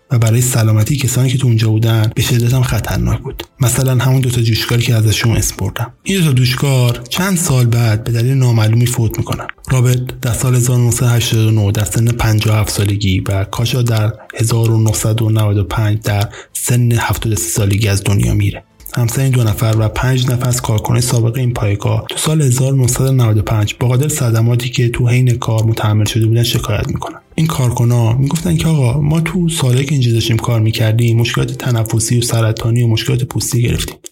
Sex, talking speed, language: male, 170 wpm, Persian